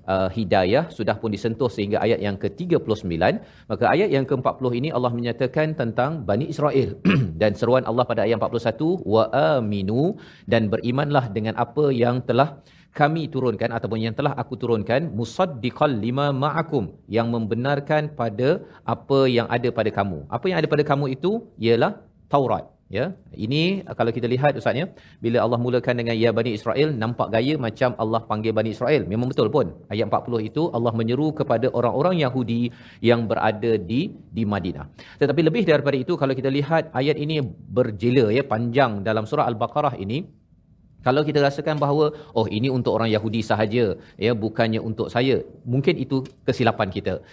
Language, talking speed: Malayalam, 165 wpm